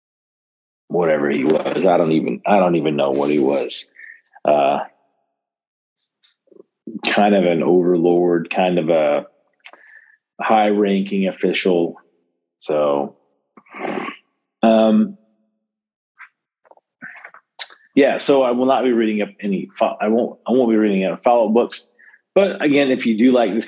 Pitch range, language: 90-120 Hz, English